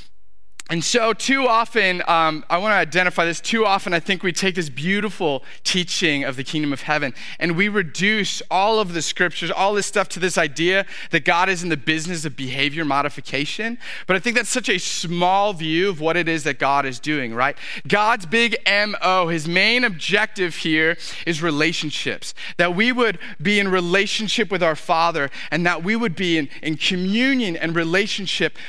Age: 30-49